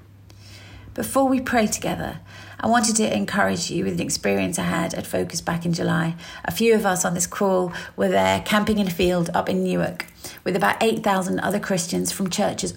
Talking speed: 195 wpm